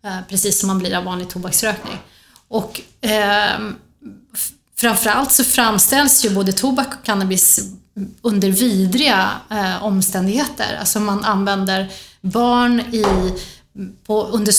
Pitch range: 190-245 Hz